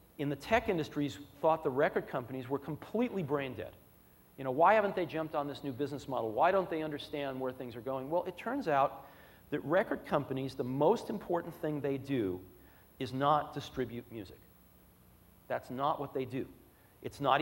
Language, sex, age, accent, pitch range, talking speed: English, male, 40-59, American, 130-175 Hz, 190 wpm